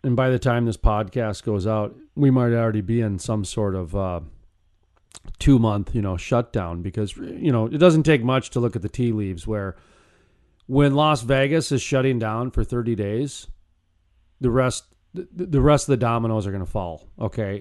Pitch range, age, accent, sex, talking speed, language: 105-140 Hz, 40-59, American, male, 195 wpm, English